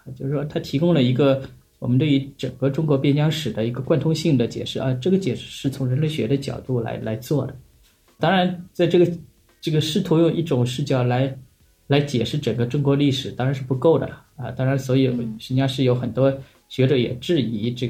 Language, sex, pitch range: Chinese, male, 125-150 Hz